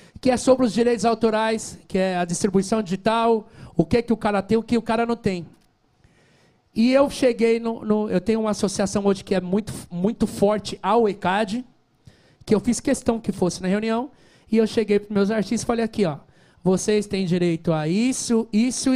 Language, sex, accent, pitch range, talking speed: Portuguese, male, Brazilian, 170-230 Hz, 205 wpm